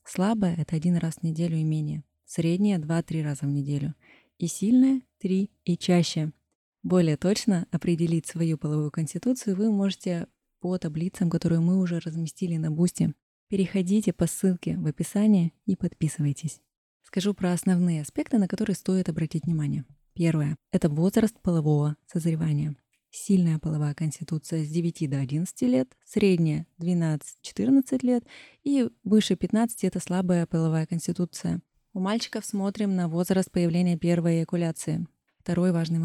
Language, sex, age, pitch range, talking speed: Russian, female, 20-39, 160-195 Hz, 140 wpm